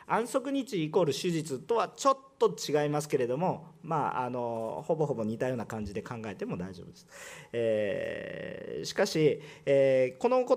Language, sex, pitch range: Japanese, male, 125-200 Hz